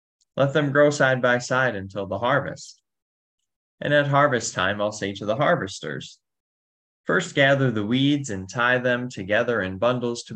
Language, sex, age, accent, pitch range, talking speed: English, male, 20-39, American, 95-125 Hz, 170 wpm